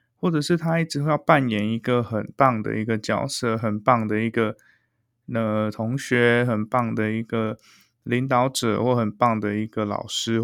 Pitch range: 115-140 Hz